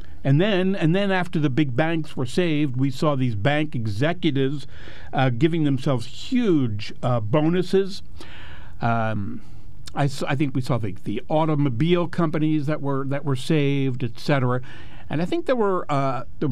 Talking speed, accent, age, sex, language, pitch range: 165 wpm, American, 60-79, male, English, 125-170 Hz